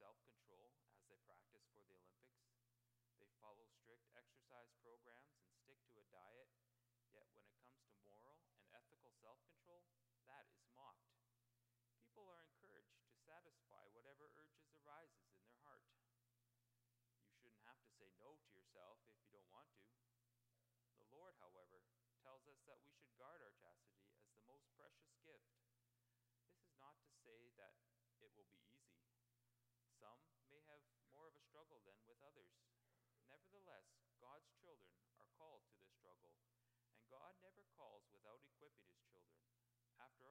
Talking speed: 160 wpm